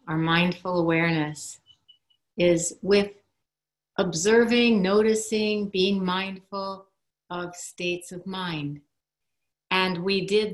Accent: American